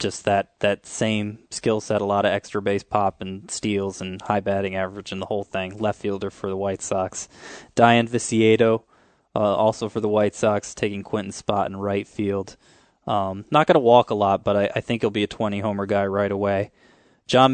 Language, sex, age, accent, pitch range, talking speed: English, male, 20-39, American, 100-115 Hz, 205 wpm